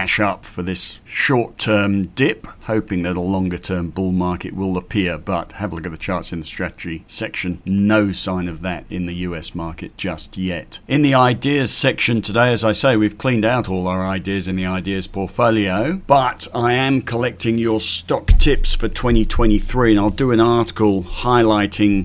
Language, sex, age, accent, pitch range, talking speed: English, male, 50-69, British, 95-115 Hz, 190 wpm